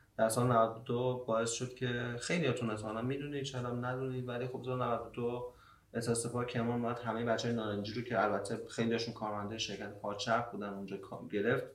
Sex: male